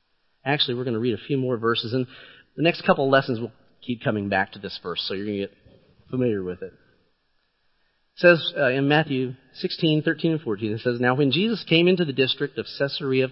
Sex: male